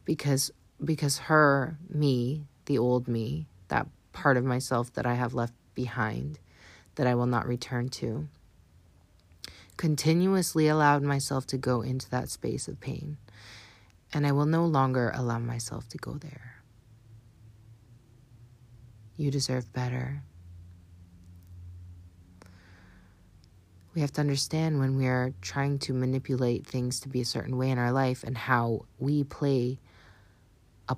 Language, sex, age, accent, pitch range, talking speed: English, female, 30-49, American, 110-140 Hz, 135 wpm